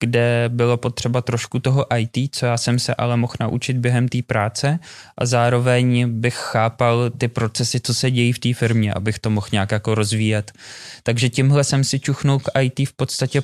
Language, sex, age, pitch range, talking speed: Slovak, male, 20-39, 115-130 Hz, 190 wpm